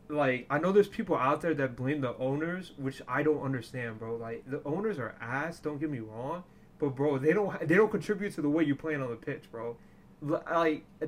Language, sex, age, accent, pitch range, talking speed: English, male, 20-39, American, 125-150 Hz, 225 wpm